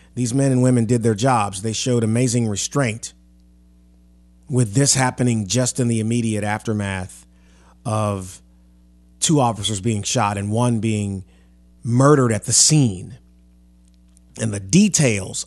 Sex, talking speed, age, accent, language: male, 130 wpm, 30-49, American, English